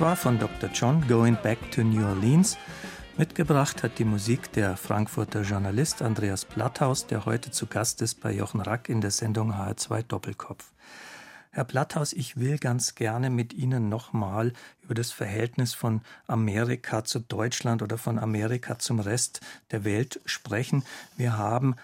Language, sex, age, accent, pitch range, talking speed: German, male, 50-69, German, 115-135 Hz, 155 wpm